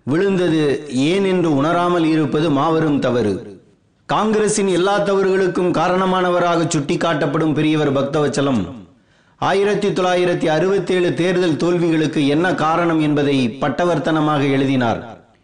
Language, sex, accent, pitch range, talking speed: Tamil, male, native, 155-190 Hz, 95 wpm